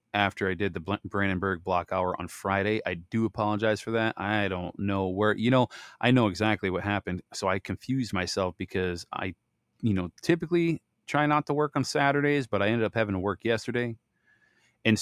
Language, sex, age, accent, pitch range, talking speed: English, male, 30-49, American, 95-110 Hz, 195 wpm